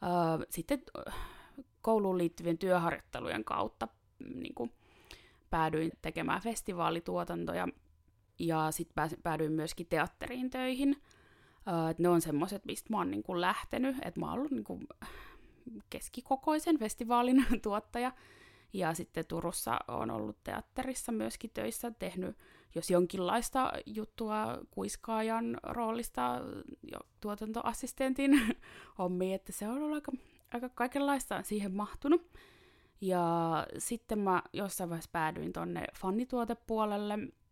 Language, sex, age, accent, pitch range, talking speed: Finnish, female, 20-39, native, 170-245 Hz, 105 wpm